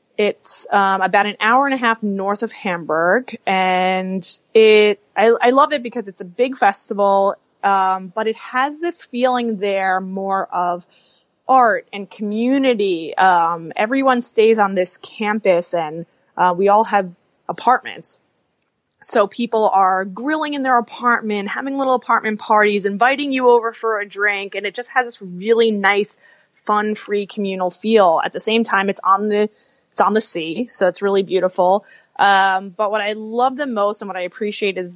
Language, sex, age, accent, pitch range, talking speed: English, female, 20-39, American, 190-230 Hz, 175 wpm